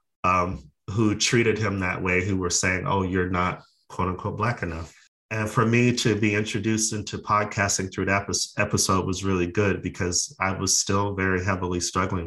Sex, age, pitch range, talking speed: male, 30-49, 90-105 Hz, 180 wpm